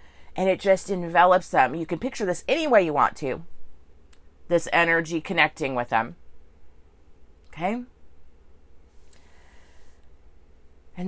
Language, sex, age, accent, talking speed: English, female, 30-49, American, 115 wpm